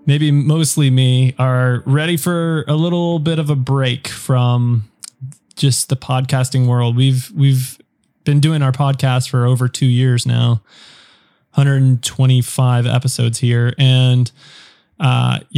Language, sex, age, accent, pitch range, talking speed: English, male, 20-39, American, 125-145 Hz, 125 wpm